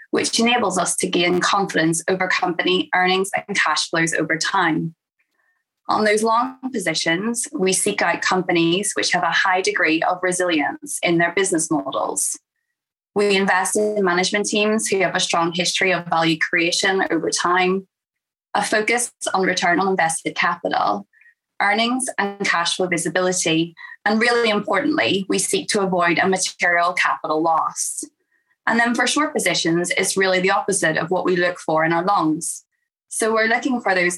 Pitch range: 175-225 Hz